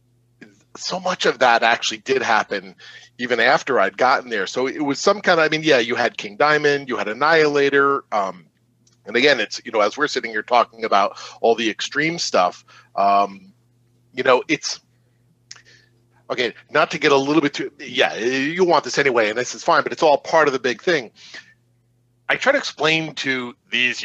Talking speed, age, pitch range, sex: 195 wpm, 40-59, 110-145 Hz, male